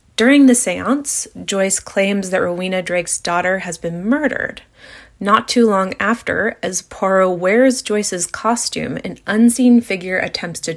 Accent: American